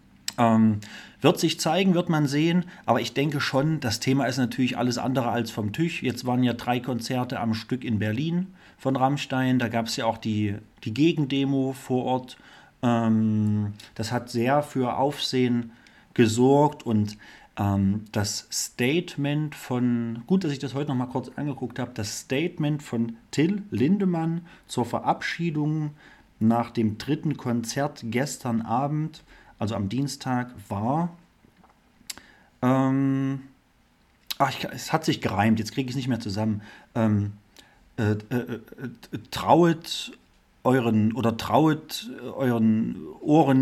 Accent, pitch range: German, 115-140 Hz